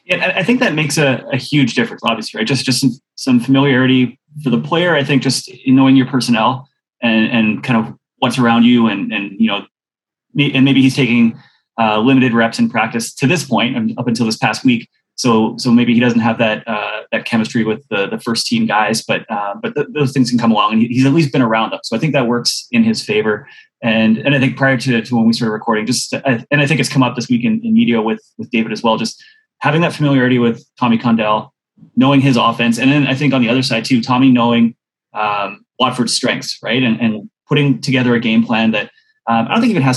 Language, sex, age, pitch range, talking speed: English, male, 20-39, 115-145 Hz, 245 wpm